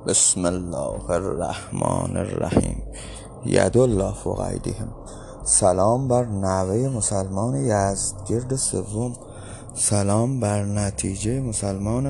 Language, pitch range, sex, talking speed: Persian, 105-135 Hz, male, 85 wpm